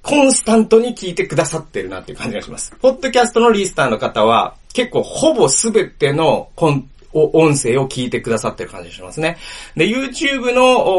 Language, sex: Japanese, male